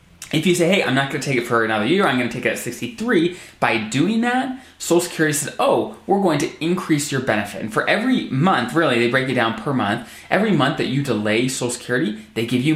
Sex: male